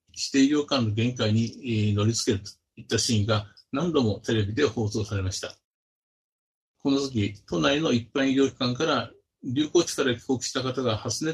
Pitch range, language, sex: 110-135 Hz, Japanese, male